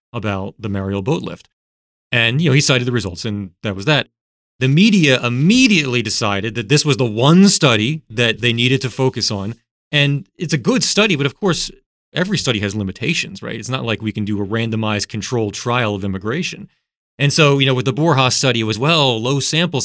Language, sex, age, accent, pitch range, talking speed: English, male, 30-49, American, 105-135 Hz, 210 wpm